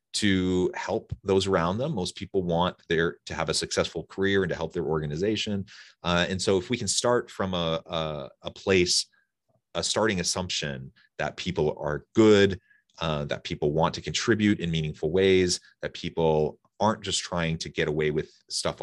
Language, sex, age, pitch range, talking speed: English, male, 30-49, 75-95 Hz, 175 wpm